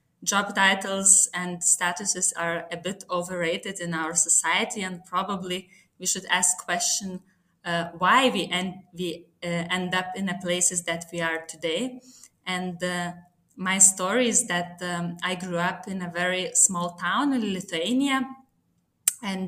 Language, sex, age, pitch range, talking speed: English, female, 20-39, 180-220 Hz, 155 wpm